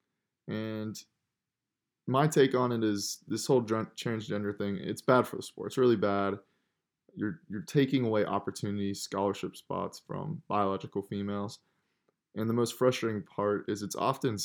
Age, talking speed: 20-39, 150 wpm